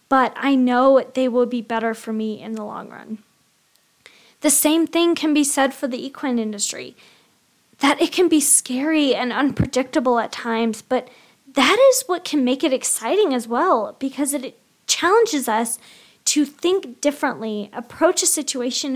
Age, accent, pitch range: 20-39, American, 225-285 Hz